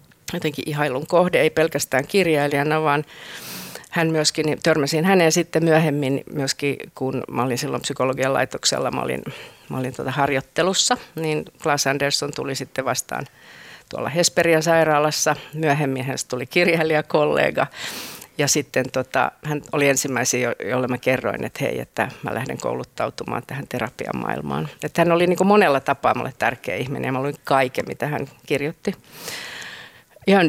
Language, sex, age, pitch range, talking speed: Finnish, female, 50-69, 135-160 Hz, 150 wpm